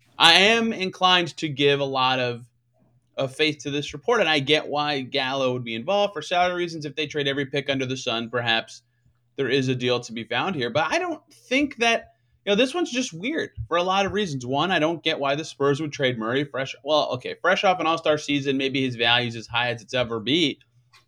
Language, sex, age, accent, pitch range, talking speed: English, male, 30-49, American, 130-185 Hz, 240 wpm